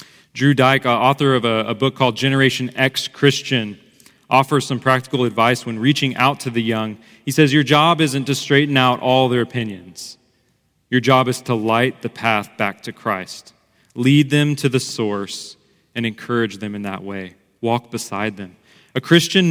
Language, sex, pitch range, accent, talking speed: English, male, 110-140 Hz, American, 180 wpm